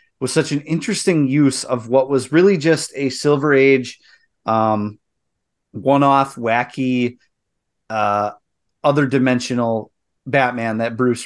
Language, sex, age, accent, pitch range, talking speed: English, male, 30-49, American, 120-165 Hz, 115 wpm